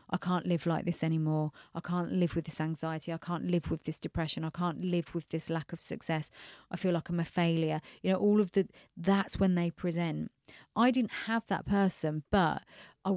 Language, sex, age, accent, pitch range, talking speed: English, female, 40-59, British, 165-185 Hz, 220 wpm